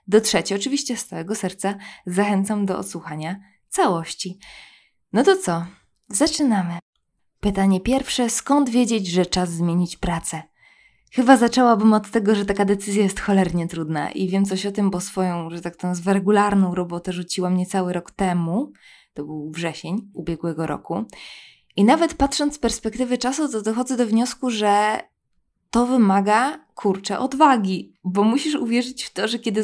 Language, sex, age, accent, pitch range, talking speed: Polish, female, 20-39, native, 185-240 Hz, 155 wpm